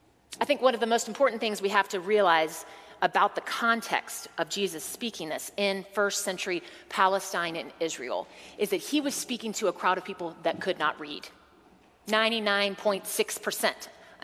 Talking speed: 170 wpm